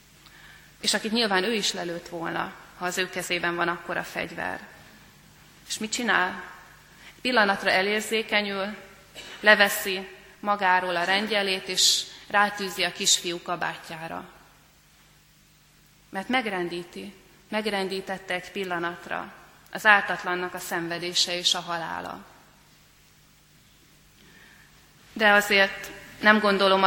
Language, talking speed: Hungarian, 100 wpm